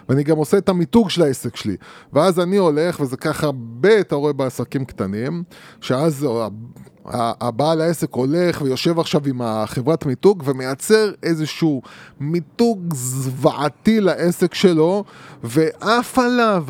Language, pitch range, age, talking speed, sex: Hebrew, 130-180 Hz, 20-39, 120 wpm, male